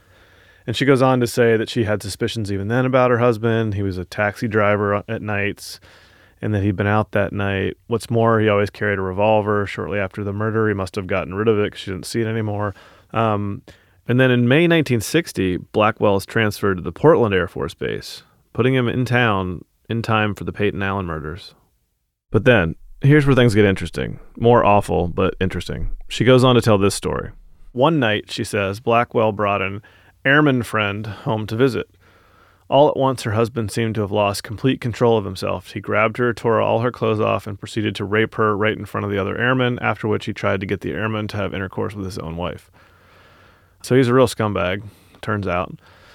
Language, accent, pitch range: English, American, 100-115 Hz